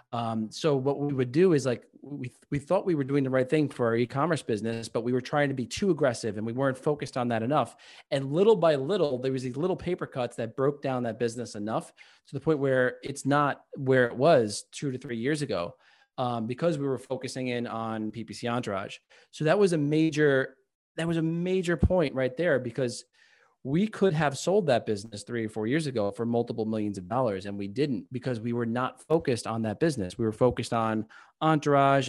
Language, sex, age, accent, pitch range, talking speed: English, male, 30-49, American, 115-145 Hz, 225 wpm